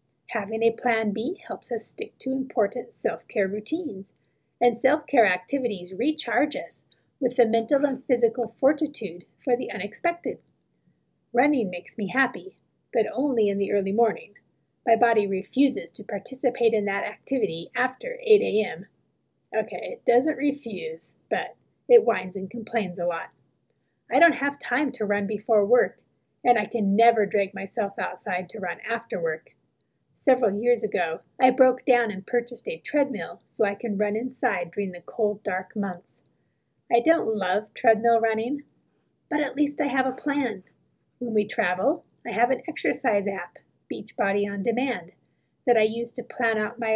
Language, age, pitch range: English, 30-49, 210-265 Hz